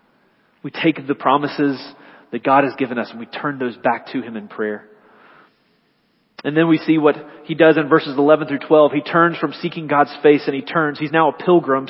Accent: American